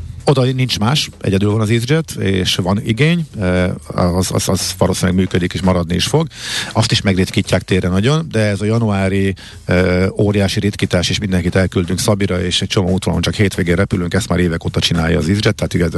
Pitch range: 95-120 Hz